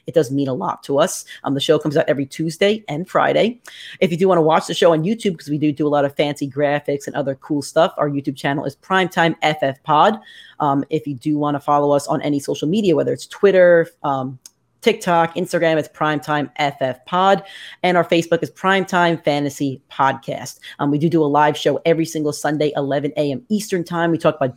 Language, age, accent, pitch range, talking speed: English, 30-49, American, 145-185 Hz, 225 wpm